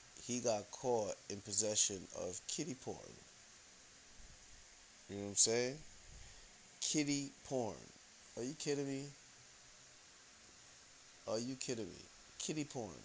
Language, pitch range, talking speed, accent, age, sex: English, 100-130 Hz, 115 wpm, American, 30-49, male